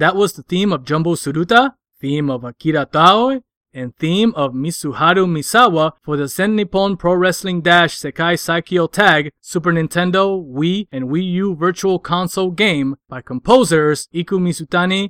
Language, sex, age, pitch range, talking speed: English, male, 20-39, 150-195 Hz, 150 wpm